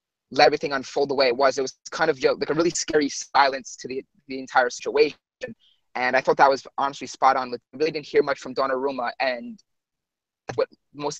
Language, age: English, 20-39